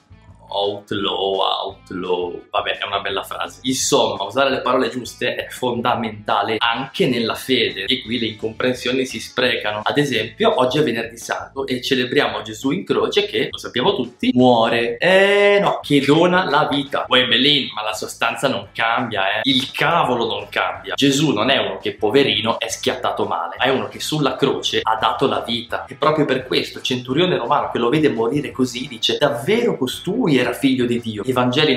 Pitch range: 110-140 Hz